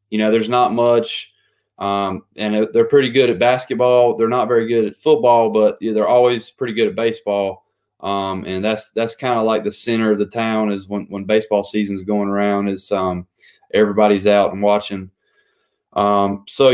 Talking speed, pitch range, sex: 195 wpm, 100-120 Hz, male